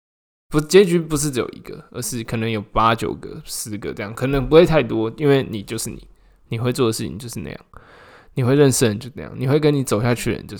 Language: Chinese